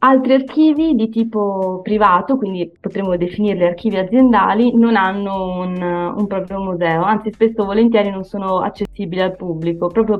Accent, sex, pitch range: native, female, 175-210 Hz